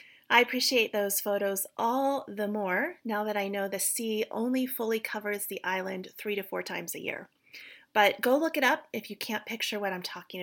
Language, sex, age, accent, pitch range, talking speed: English, female, 30-49, American, 195-235 Hz, 205 wpm